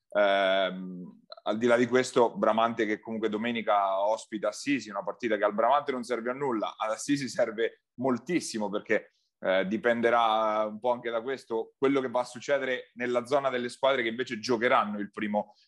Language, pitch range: Italian, 110-135 Hz